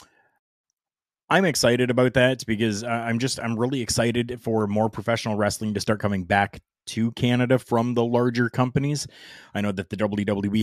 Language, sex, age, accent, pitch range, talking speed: English, male, 30-49, American, 95-120 Hz, 165 wpm